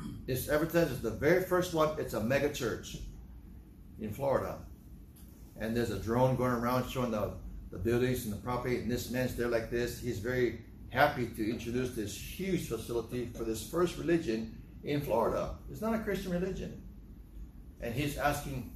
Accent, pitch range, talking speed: American, 105-145 Hz, 175 wpm